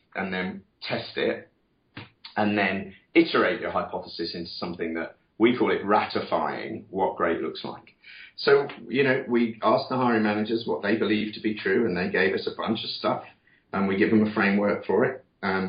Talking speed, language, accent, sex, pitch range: 195 wpm, English, British, male, 95-120 Hz